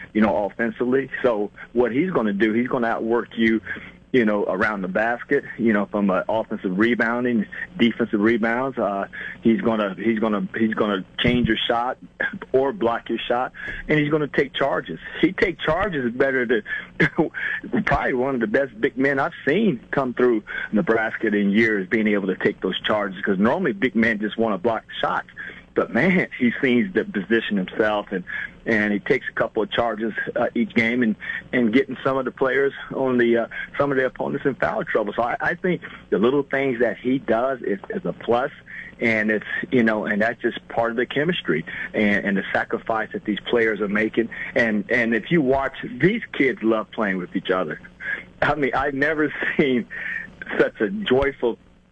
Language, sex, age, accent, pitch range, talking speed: English, male, 40-59, American, 110-130 Hz, 200 wpm